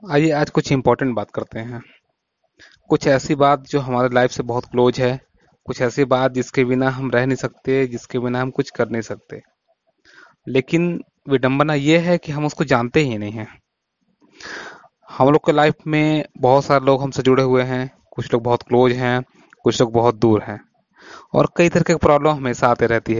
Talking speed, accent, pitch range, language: 190 wpm, native, 120-145 Hz, Hindi